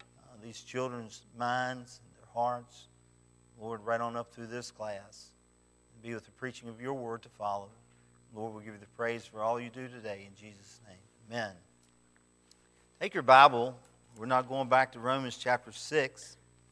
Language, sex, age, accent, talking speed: English, male, 50-69, American, 175 wpm